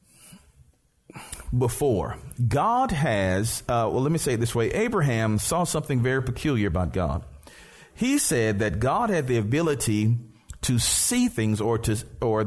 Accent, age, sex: American, 40-59, male